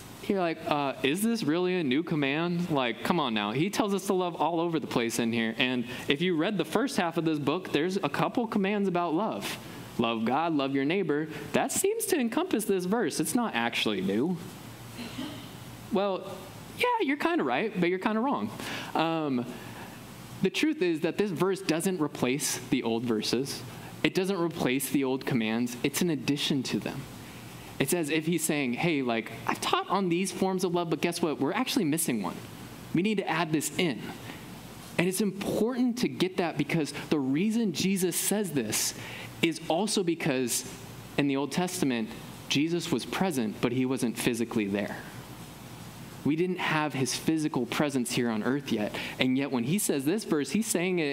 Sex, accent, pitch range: male, American, 130-190 Hz